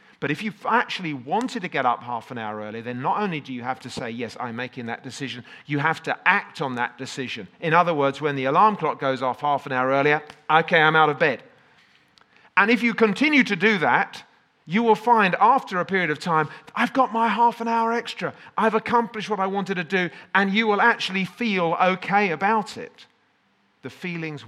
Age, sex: 40-59, male